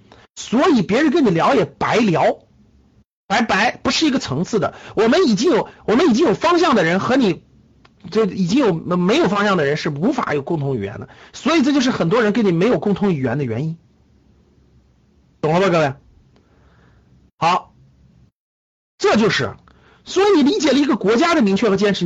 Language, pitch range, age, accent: Chinese, 130-210 Hz, 50-69, native